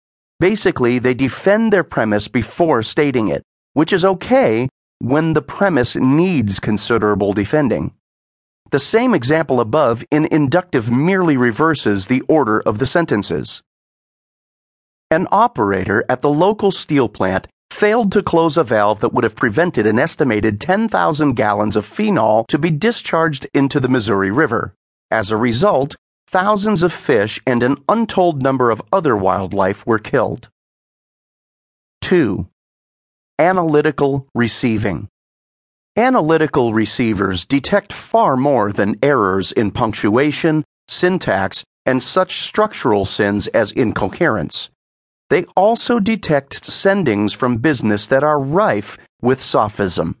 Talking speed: 125 wpm